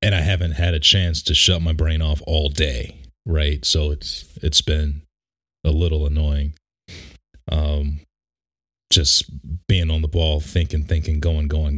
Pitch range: 75-85 Hz